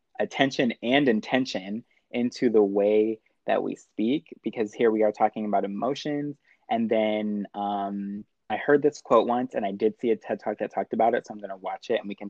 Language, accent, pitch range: English, American, 100-120 Hz